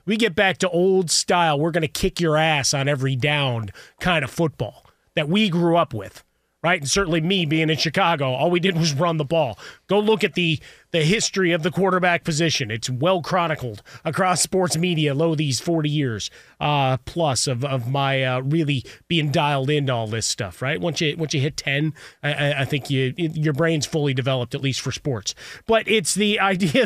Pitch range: 135-170 Hz